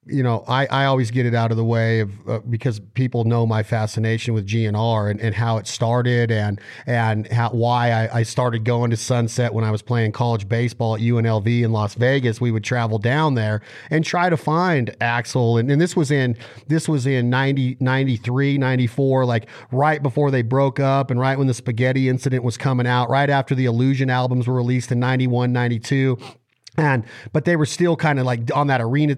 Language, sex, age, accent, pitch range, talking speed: English, male, 40-59, American, 120-150 Hz, 210 wpm